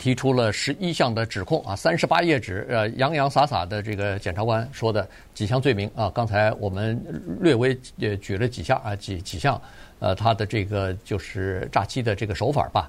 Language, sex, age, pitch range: Chinese, male, 50-69, 105-130 Hz